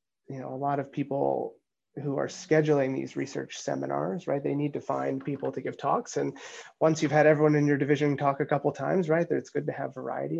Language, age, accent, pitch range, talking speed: English, 30-49, American, 140-170 Hz, 230 wpm